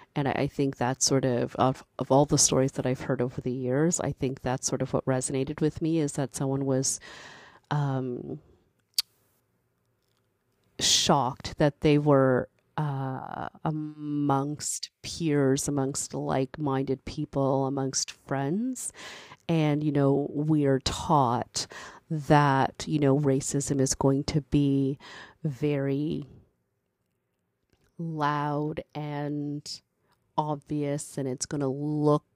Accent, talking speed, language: American, 120 wpm, English